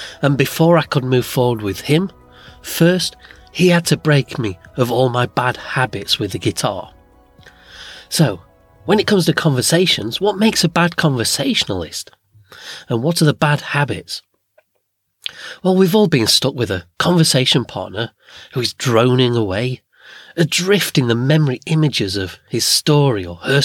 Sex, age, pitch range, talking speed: male, 30-49, 115-165 Hz, 155 wpm